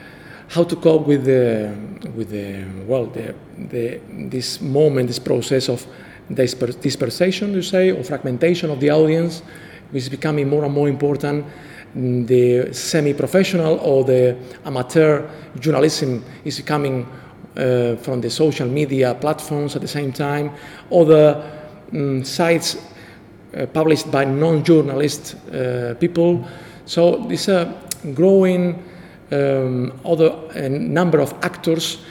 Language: English